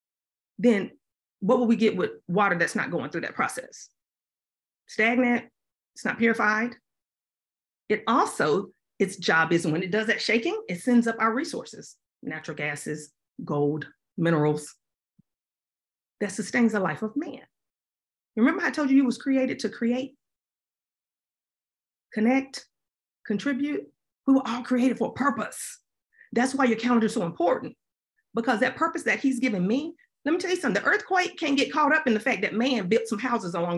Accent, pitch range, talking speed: American, 225-290 Hz, 165 wpm